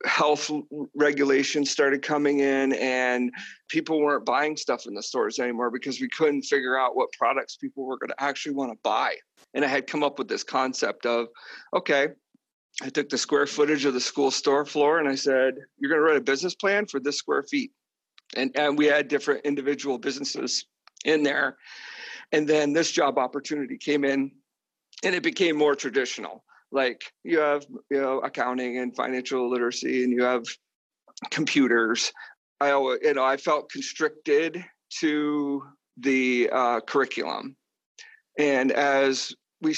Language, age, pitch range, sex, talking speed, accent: English, 50-69, 135-155 Hz, male, 165 wpm, American